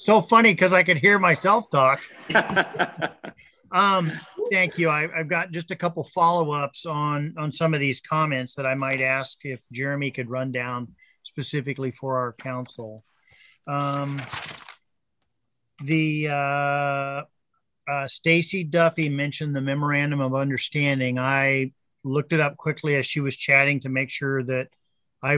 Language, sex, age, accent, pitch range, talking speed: English, male, 50-69, American, 135-155 Hz, 145 wpm